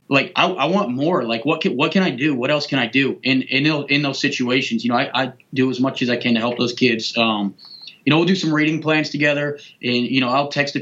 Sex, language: male, English